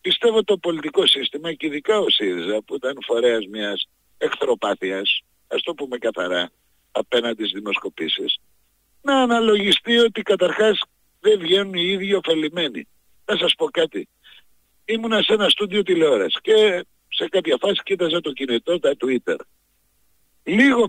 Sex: male